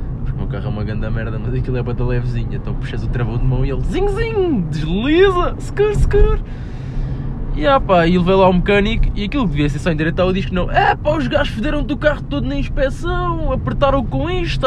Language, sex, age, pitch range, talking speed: Portuguese, male, 20-39, 130-175 Hz, 230 wpm